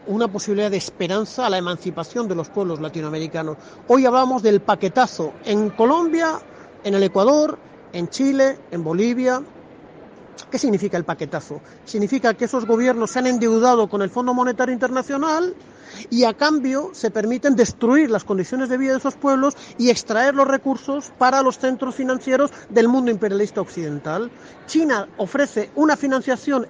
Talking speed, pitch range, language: 155 wpm, 205-275 Hz, Spanish